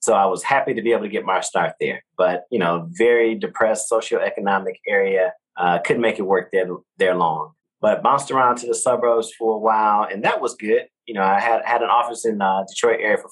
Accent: American